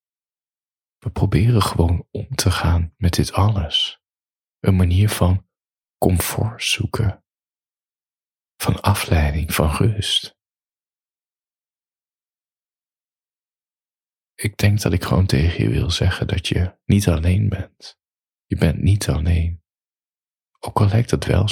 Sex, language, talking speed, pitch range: male, Dutch, 115 wpm, 85-105 Hz